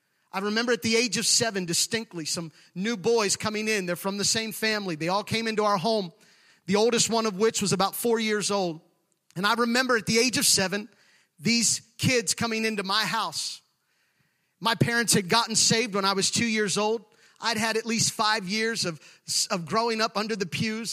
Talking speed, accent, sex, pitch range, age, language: 205 wpm, American, male, 200-245 Hz, 30-49, English